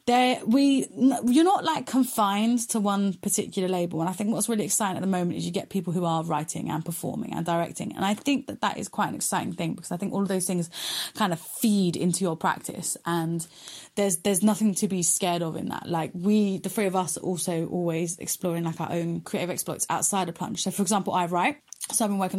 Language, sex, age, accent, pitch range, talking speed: English, female, 20-39, British, 180-230 Hz, 240 wpm